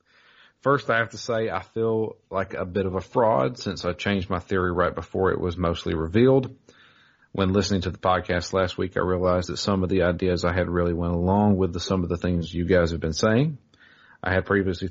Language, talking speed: English, 230 wpm